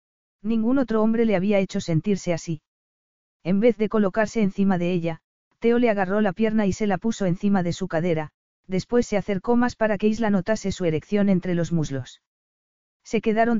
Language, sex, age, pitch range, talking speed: Spanish, female, 40-59, 180-215 Hz, 190 wpm